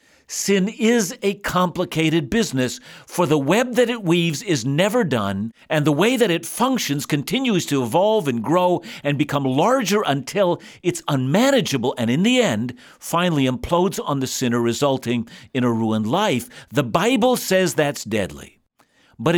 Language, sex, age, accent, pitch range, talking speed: English, male, 50-69, American, 130-195 Hz, 160 wpm